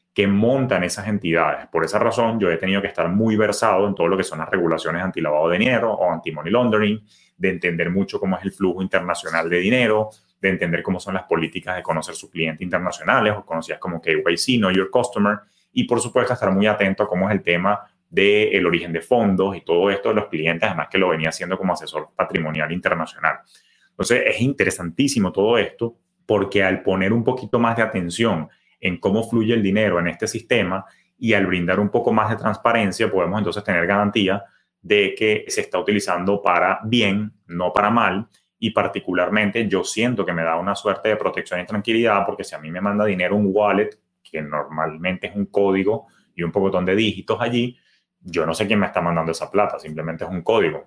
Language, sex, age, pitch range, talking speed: Spanish, male, 30-49, 90-110 Hz, 210 wpm